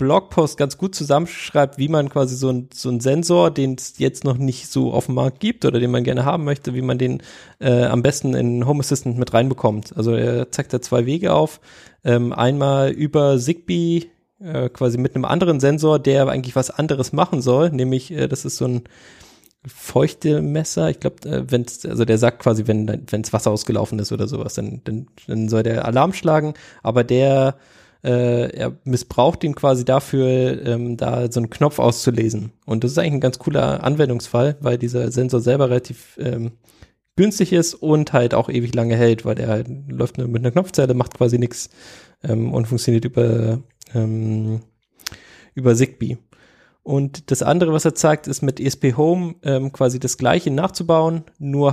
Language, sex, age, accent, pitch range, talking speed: German, male, 20-39, German, 120-145 Hz, 185 wpm